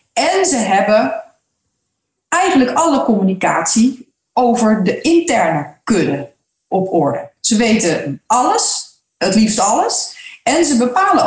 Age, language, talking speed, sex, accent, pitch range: 40-59, Dutch, 110 wpm, female, Dutch, 205-300 Hz